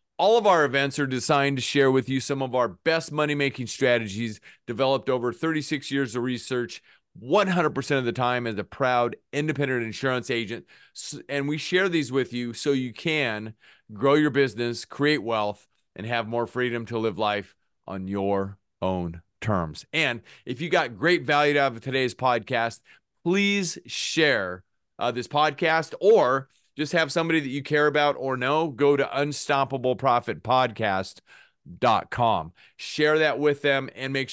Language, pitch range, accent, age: English, 115-145 Hz, American, 40-59